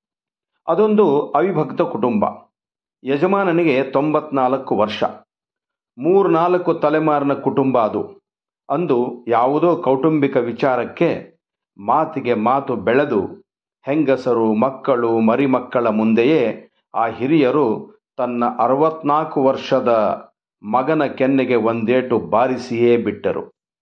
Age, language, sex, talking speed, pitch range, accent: 50-69, Kannada, male, 80 wpm, 115-140 Hz, native